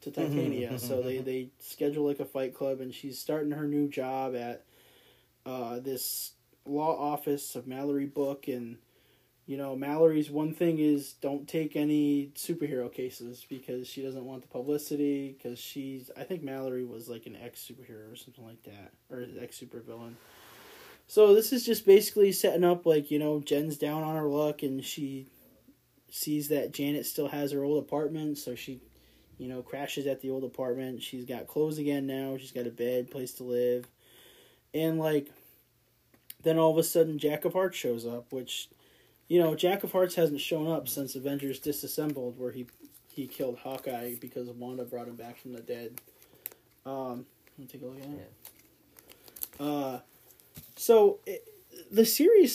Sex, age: male, 20-39